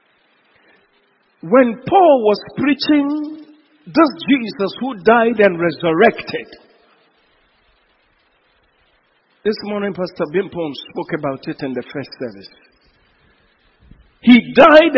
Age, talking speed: 50-69, 90 wpm